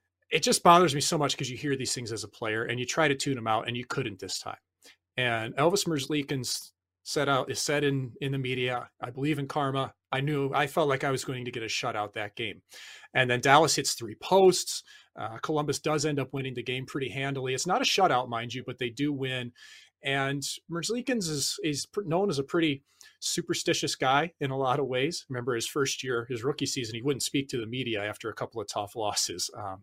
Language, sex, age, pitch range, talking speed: English, male, 30-49, 125-155 Hz, 225 wpm